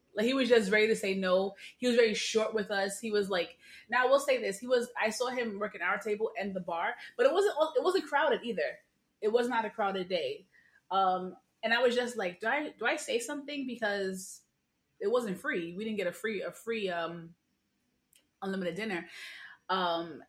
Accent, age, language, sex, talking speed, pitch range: American, 20-39, English, female, 215 wpm, 185-255 Hz